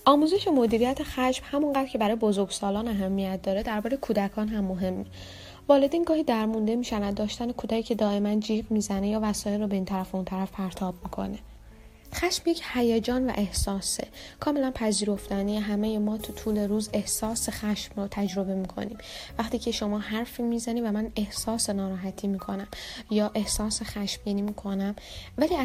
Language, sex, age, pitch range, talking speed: Persian, female, 10-29, 200-235 Hz, 160 wpm